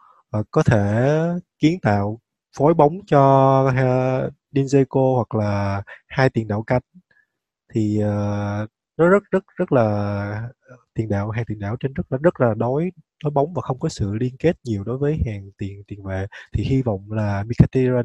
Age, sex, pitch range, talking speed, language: 20-39, male, 105-140 Hz, 185 wpm, Vietnamese